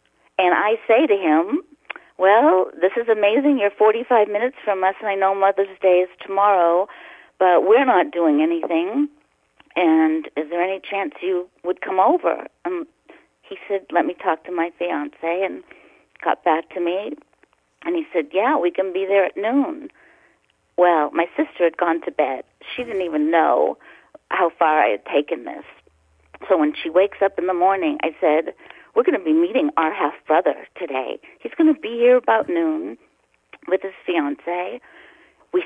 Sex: female